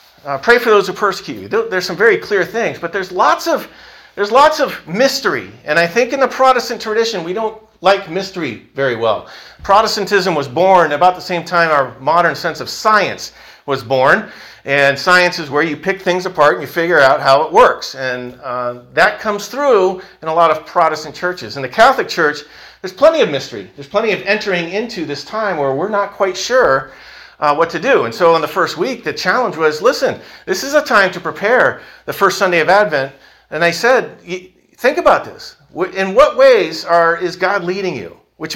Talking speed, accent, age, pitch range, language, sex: 210 wpm, American, 40-59, 140-205 Hz, English, male